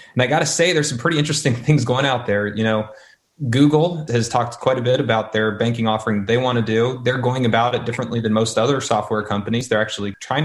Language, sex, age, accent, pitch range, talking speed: English, male, 20-39, American, 110-130 Hz, 240 wpm